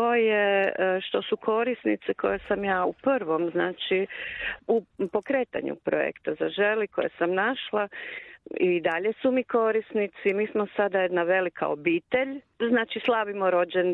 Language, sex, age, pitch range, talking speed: Croatian, female, 40-59, 175-215 Hz, 135 wpm